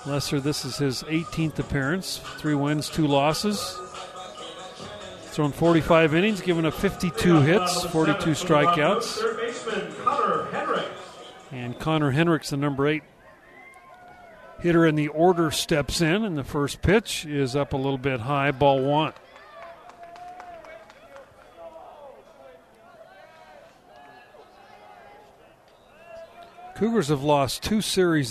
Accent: American